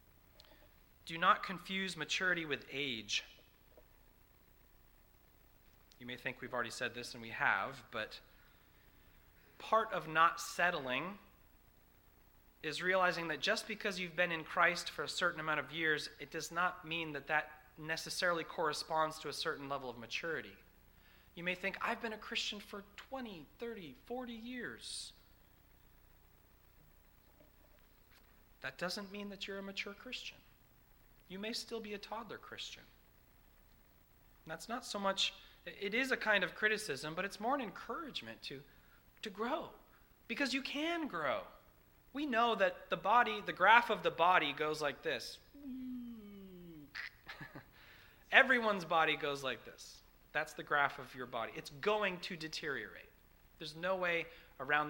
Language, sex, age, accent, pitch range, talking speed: English, male, 30-49, American, 135-205 Hz, 145 wpm